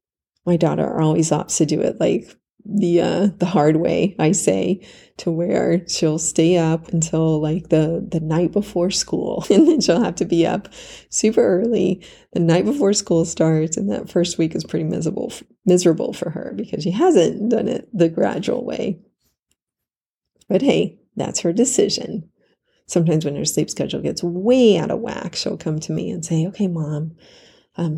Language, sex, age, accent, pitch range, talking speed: English, female, 30-49, American, 160-205 Hz, 180 wpm